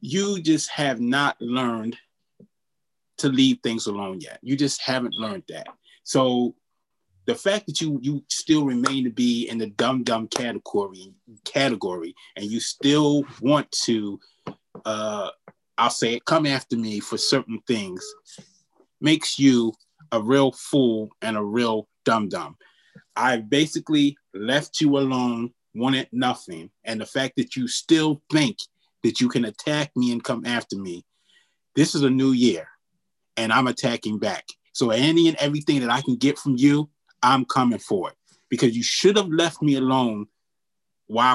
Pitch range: 115-150 Hz